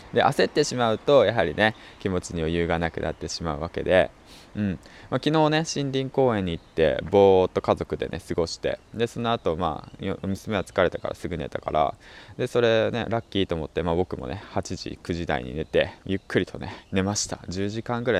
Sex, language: male, Japanese